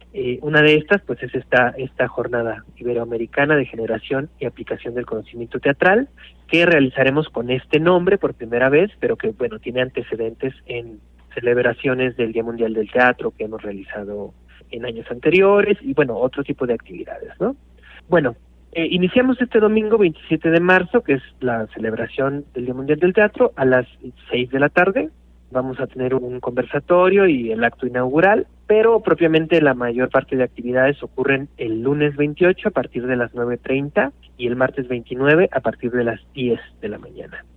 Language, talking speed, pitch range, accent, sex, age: Spanish, 175 wpm, 120-155 Hz, Mexican, male, 40-59